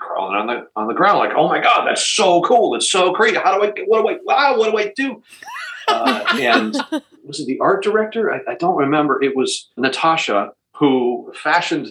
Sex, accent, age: male, American, 40-59